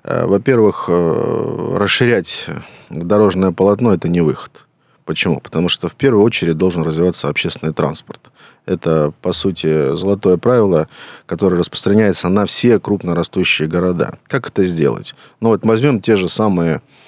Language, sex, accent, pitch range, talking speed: Russian, male, native, 85-95 Hz, 130 wpm